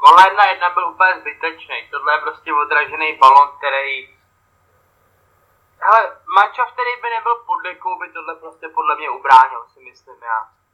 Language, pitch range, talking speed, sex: Czech, 175-285 Hz, 155 wpm, male